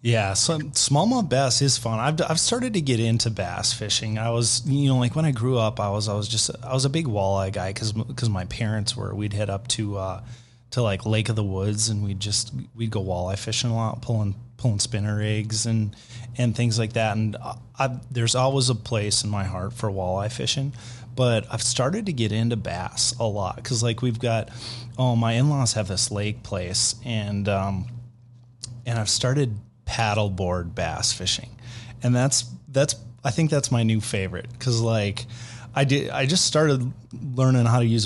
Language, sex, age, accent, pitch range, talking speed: English, male, 30-49, American, 105-125 Hz, 205 wpm